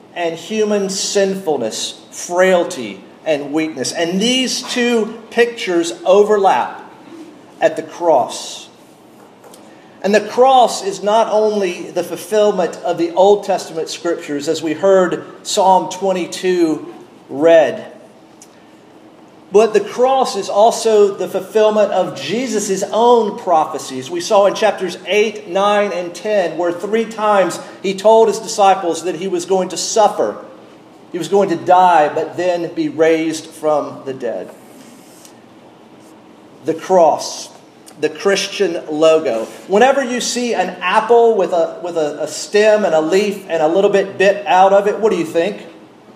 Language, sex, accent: English, male, American